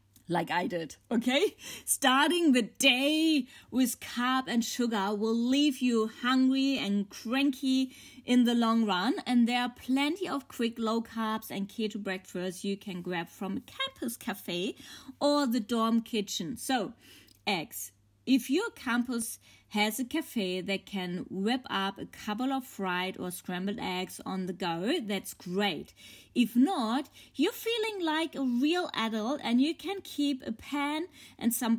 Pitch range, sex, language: 215-275 Hz, female, English